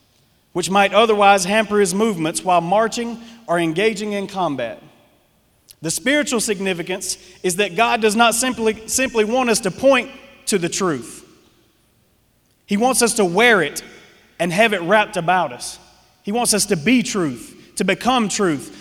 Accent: American